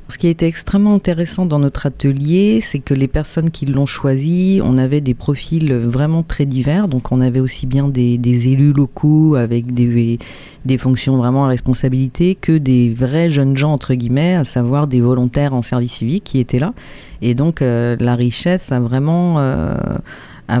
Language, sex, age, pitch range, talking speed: French, female, 40-59, 130-155 Hz, 190 wpm